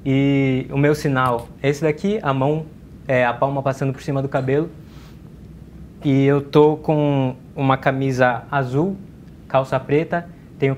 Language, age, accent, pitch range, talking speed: Portuguese, 20-39, Brazilian, 125-140 Hz, 150 wpm